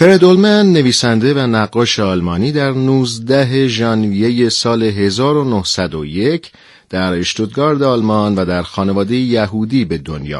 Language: Persian